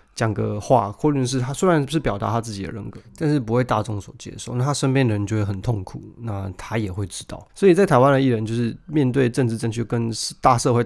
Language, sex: Chinese, male